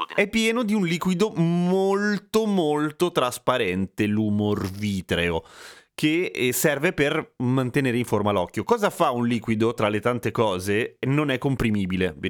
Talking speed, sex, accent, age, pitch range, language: 140 wpm, male, native, 30-49, 110-170 Hz, Italian